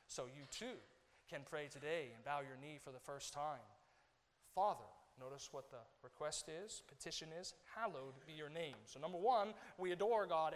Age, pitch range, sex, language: 40-59, 145-185 Hz, male, English